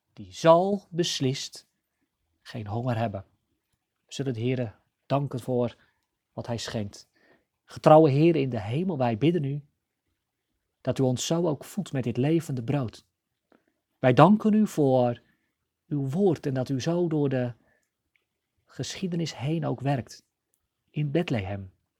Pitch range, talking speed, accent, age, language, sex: 120-155 Hz, 140 wpm, Dutch, 40-59, Dutch, male